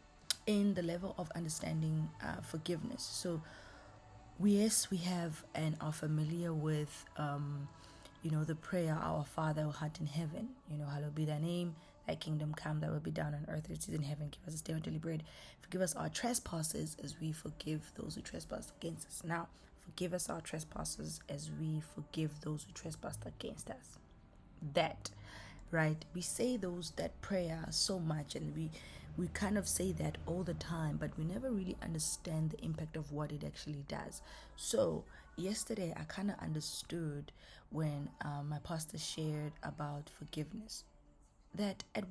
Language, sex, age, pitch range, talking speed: English, female, 20-39, 150-175 Hz, 175 wpm